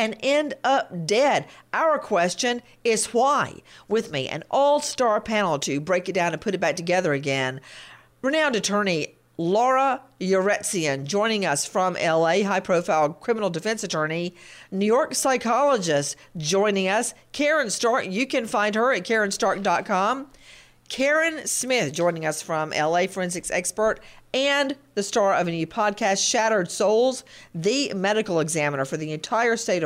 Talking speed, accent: 145 wpm, American